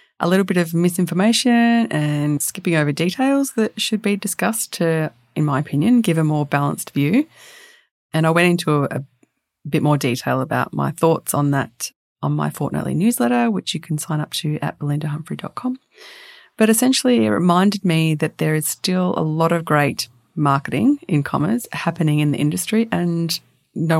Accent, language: Australian, English